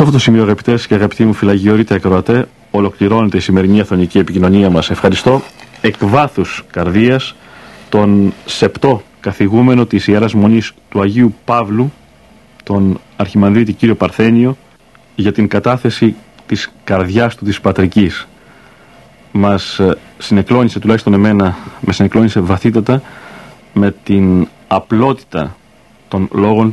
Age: 40-59